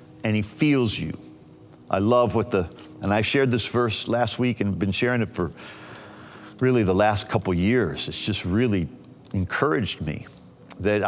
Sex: male